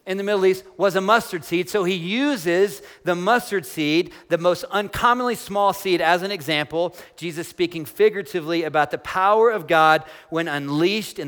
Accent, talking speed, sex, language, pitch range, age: American, 175 wpm, male, English, 160-205 Hz, 40-59